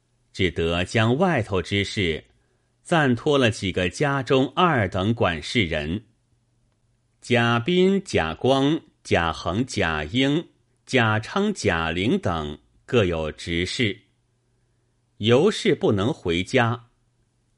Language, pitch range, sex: Chinese, 95-125 Hz, male